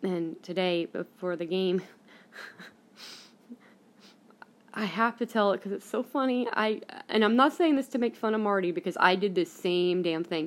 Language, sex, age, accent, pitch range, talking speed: English, female, 20-39, American, 185-230 Hz, 185 wpm